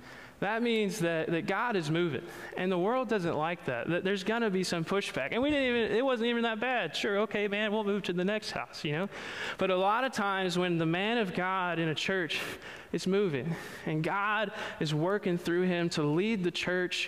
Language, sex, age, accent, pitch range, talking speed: English, male, 20-39, American, 160-195 Hz, 225 wpm